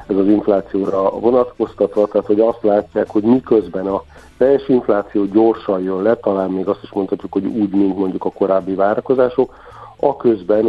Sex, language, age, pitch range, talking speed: male, Hungarian, 50-69, 95-105 Hz, 170 wpm